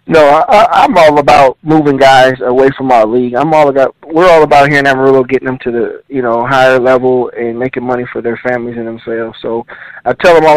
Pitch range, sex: 130-145 Hz, male